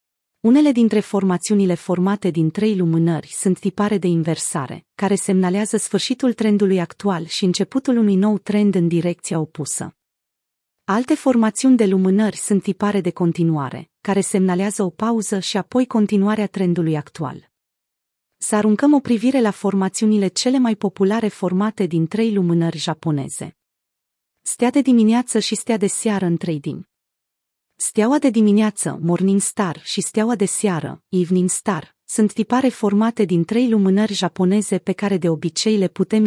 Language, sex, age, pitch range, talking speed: Romanian, female, 30-49, 180-220 Hz, 145 wpm